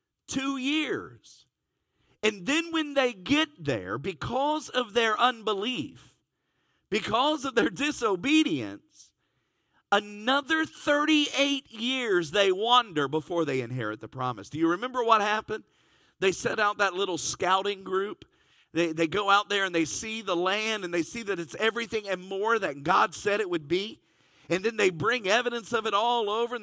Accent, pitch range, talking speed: American, 160-245 Hz, 160 wpm